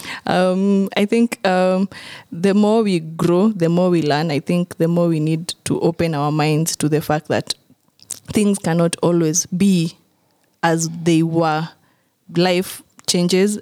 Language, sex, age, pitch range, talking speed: English, female, 20-39, 160-185 Hz, 155 wpm